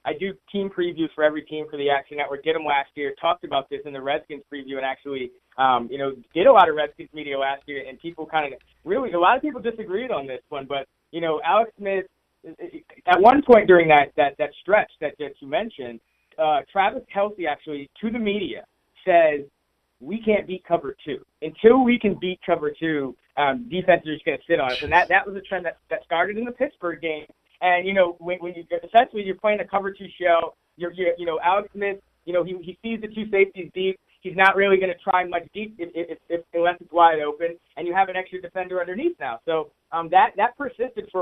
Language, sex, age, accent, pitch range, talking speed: English, male, 30-49, American, 155-205 Hz, 235 wpm